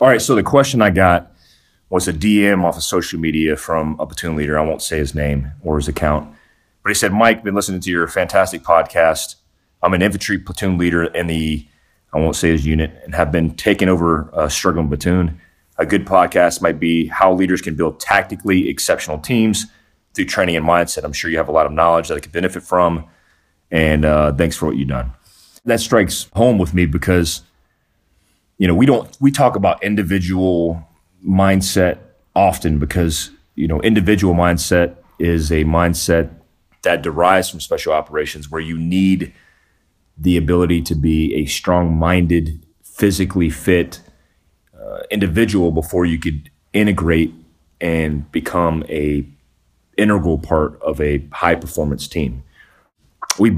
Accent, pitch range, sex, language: American, 80-90 Hz, male, English